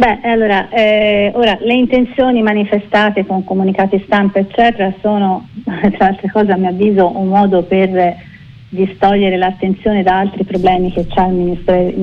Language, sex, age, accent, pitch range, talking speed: Italian, female, 40-59, native, 185-225 Hz, 150 wpm